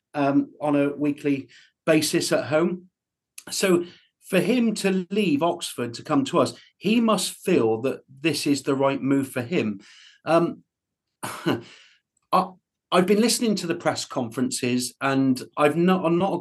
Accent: British